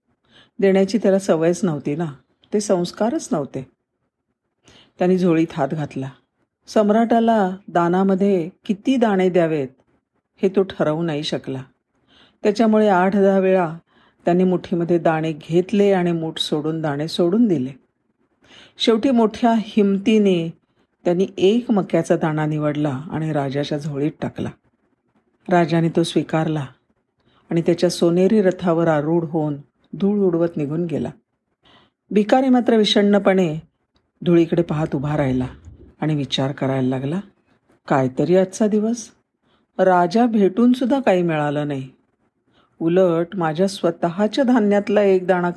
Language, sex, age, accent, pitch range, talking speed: Marathi, female, 50-69, native, 150-200 Hz, 115 wpm